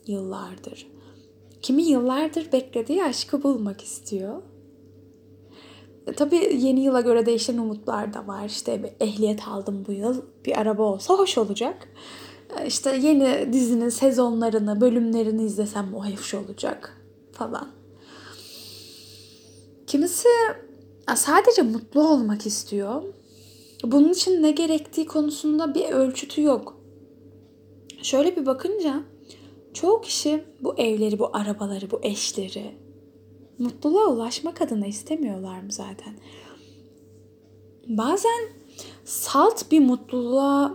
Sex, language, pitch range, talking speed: female, Turkish, 215-300 Hz, 105 wpm